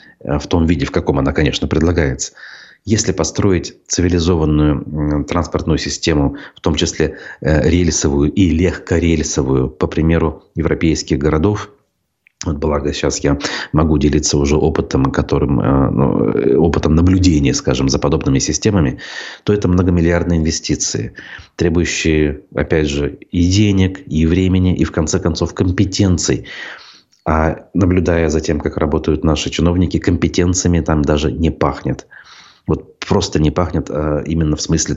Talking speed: 125 wpm